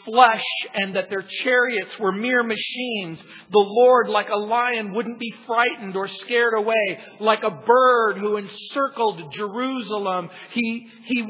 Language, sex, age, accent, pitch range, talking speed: English, male, 50-69, American, 195-245 Hz, 145 wpm